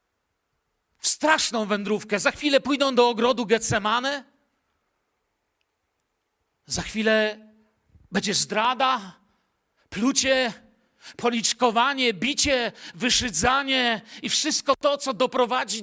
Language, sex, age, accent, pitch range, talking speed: Polish, male, 50-69, native, 195-250 Hz, 85 wpm